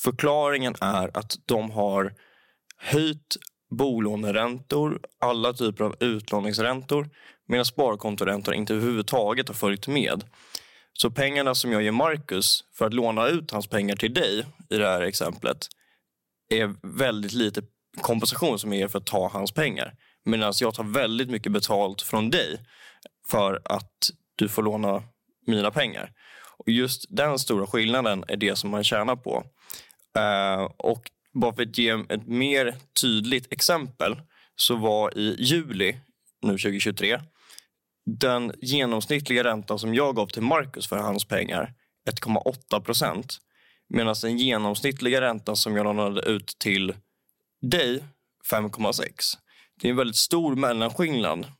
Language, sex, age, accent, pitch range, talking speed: Swedish, male, 20-39, native, 105-125 Hz, 140 wpm